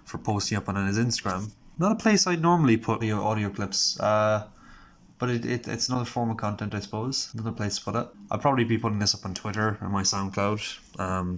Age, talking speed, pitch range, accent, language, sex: 20-39, 225 wpm, 100-130 Hz, Irish, English, male